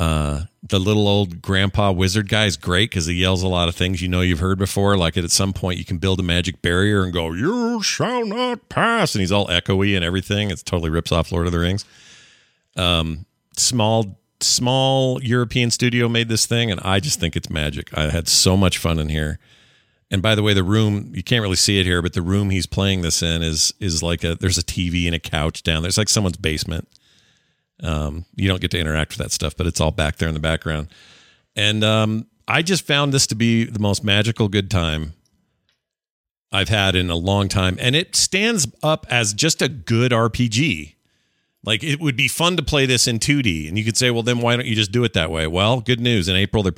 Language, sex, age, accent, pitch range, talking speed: English, male, 40-59, American, 90-115 Hz, 230 wpm